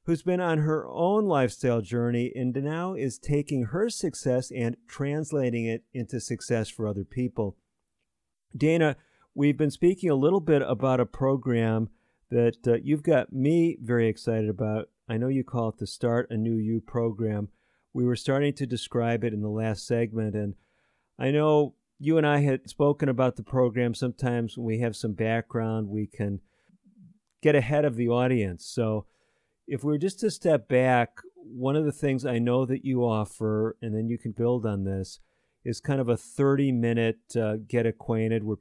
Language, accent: English, American